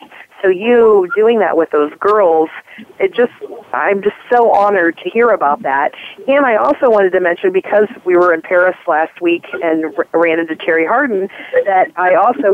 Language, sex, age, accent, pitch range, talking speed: English, female, 40-59, American, 175-215 Hz, 185 wpm